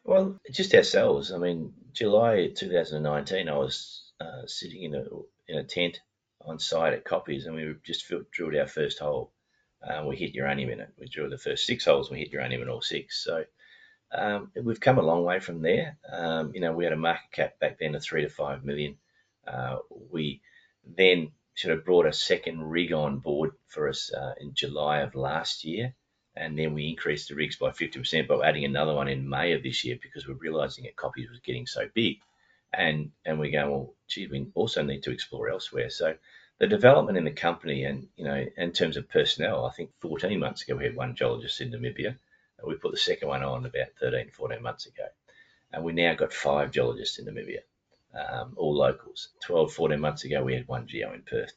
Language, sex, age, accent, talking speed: English, male, 30-49, Australian, 215 wpm